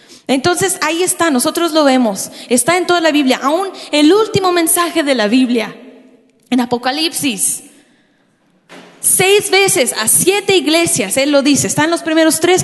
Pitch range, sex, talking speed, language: 250-335 Hz, female, 155 wpm, Spanish